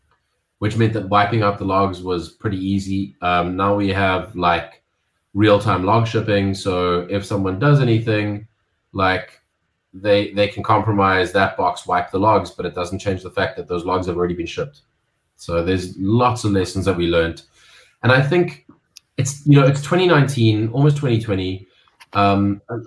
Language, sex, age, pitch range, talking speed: English, male, 20-39, 95-115 Hz, 170 wpm